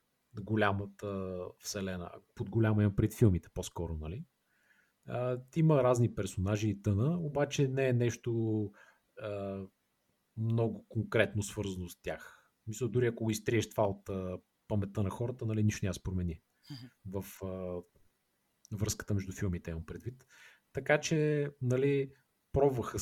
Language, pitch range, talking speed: Bulgarian, 95-120 Hz, 135 wpm